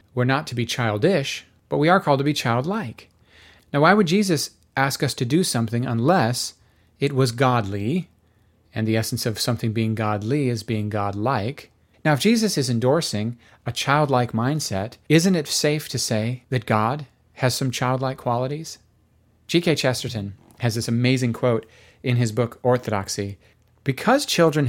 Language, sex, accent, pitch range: English, male, American, 110-145 Hz